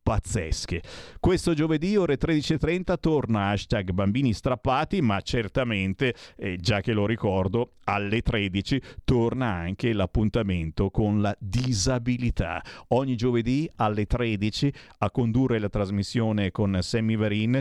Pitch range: 95-125 Hz